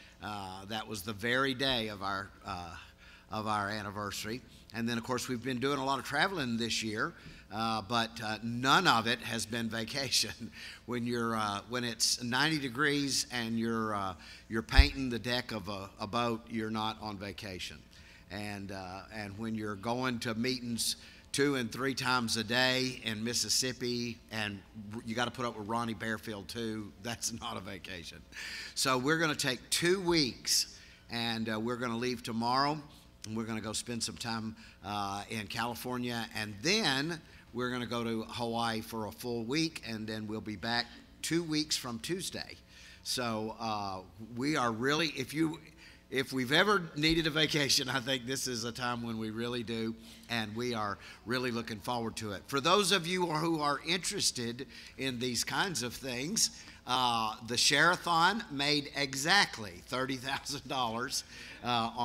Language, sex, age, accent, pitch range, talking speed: English, male, 50-69, American, 110-130 Hz, 170 wpm